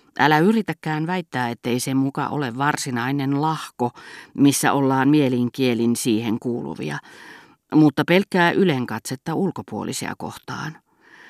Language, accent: Finnish, native